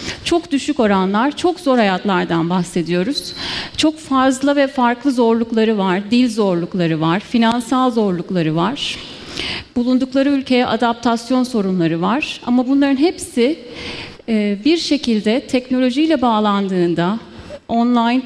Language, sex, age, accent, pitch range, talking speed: Turkish, female, 30-49, native, 205-255 Hz, 105 wpm